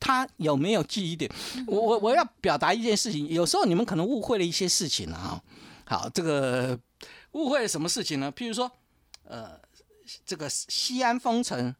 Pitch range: 140-230 Hz